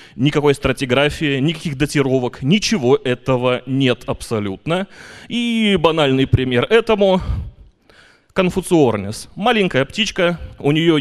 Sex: male